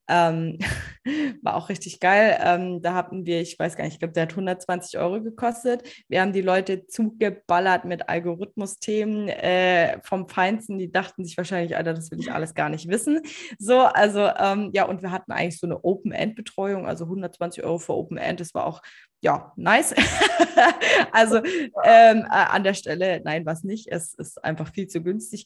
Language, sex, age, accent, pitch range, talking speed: German, female, 20-39, German, 165-205 Hz, 185 wpm